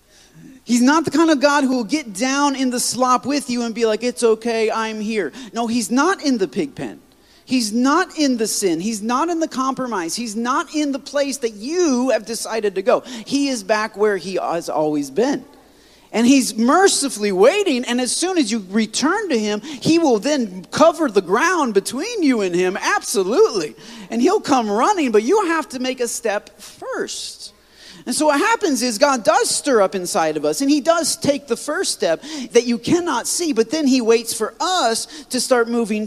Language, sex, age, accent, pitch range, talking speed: English, male, 30-49, American, 230-315 Hz, 210 wpm